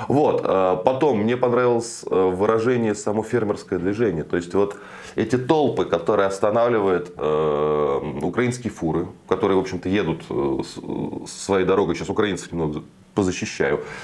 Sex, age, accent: male, 20-39, native